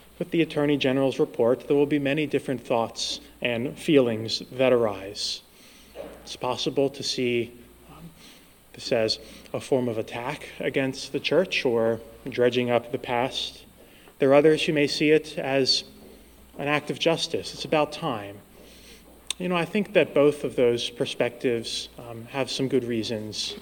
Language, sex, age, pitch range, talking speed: English, male, 30-49, 120-150 Hz, 160 wpm